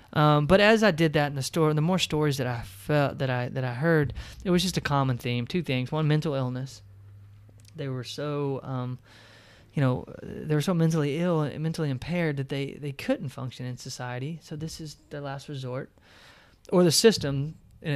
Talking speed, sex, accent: 205 wpm, male, American